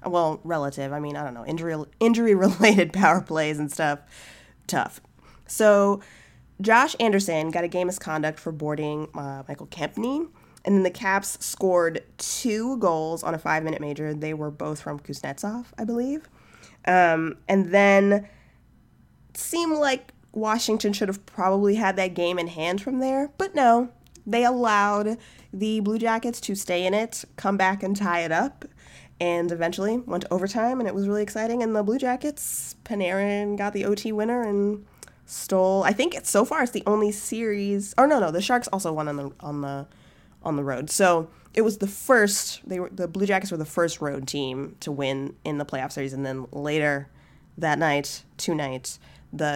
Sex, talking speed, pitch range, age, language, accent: female, 185 wpm, 155-215 Hz, 20-39, English, American